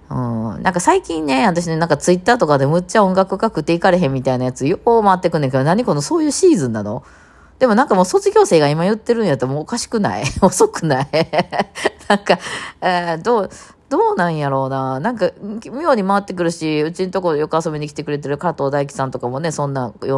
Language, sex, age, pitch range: Japanese, female, 20-39, 125-185 Hz